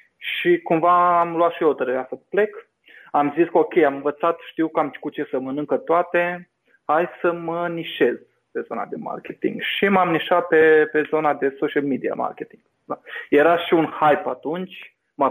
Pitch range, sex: 140-170 Hz, male